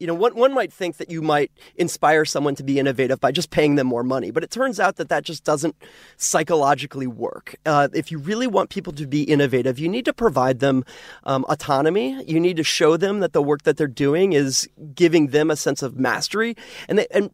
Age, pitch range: 30-49, 145-180 Hz